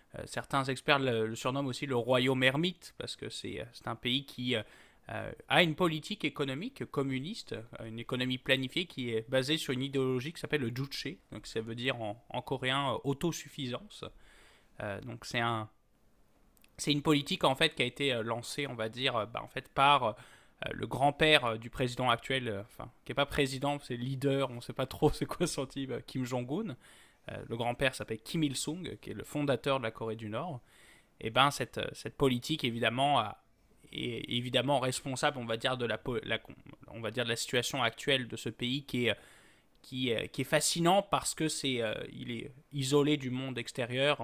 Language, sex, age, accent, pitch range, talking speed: French, male, 20-39, French, 120-145 Hz, 185 wpm